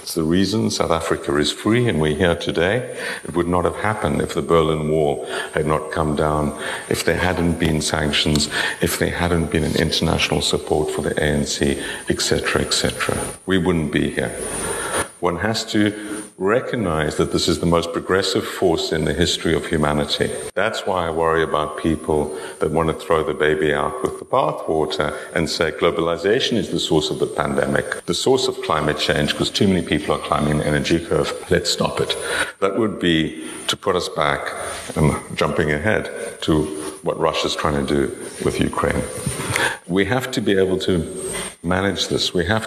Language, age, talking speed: English, 50-69, 185 wpm